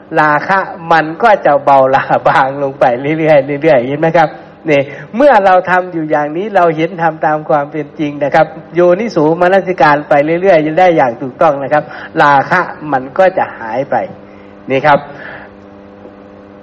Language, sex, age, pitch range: Thai, male, 60-79, 100-160 Hz